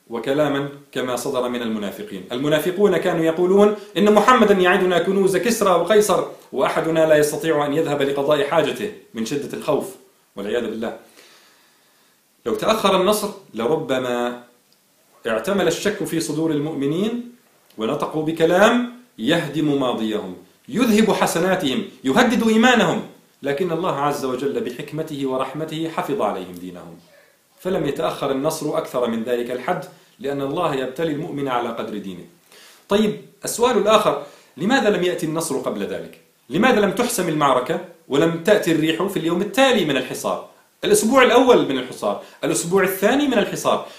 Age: 40-59